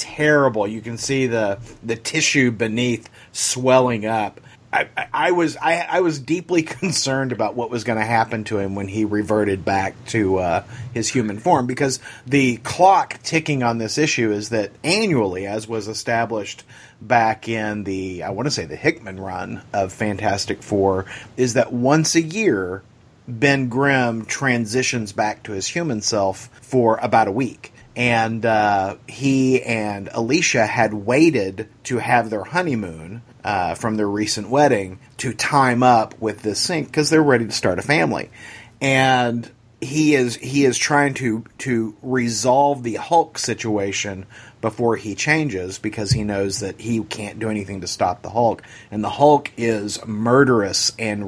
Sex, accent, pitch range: male, American, 105-130 Hz